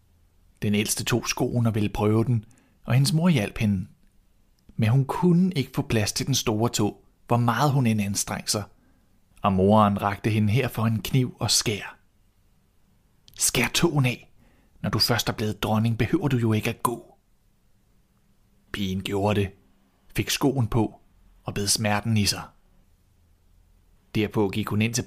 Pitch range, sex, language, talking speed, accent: 100-130 Hz, male, Danish, 170 wpm, native